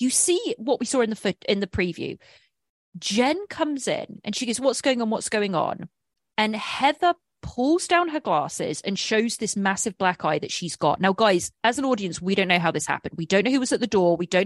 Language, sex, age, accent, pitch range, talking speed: English, female, 30-49, British, 190-285 Hz, 240 wpm